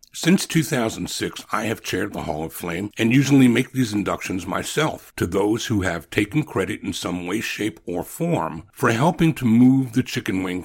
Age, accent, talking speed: 60-79, American, 190 wpm